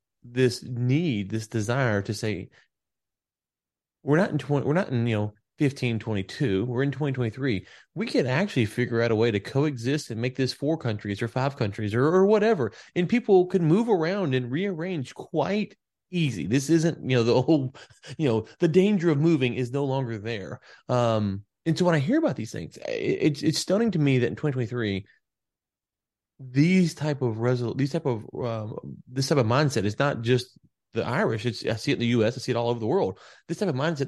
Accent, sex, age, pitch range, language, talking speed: American, male, 20-39, 120-155 Hz, English, 205 wpm